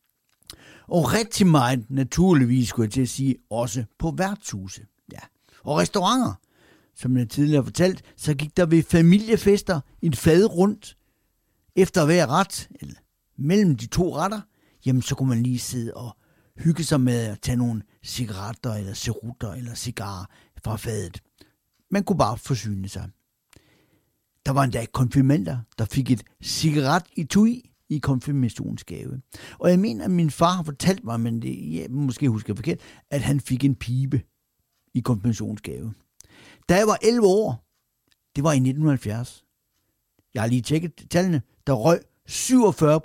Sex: male